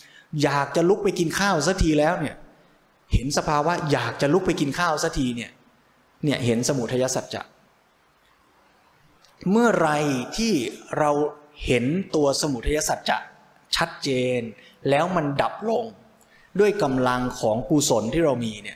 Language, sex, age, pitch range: Thai, male, 20-39, 130-175 Hz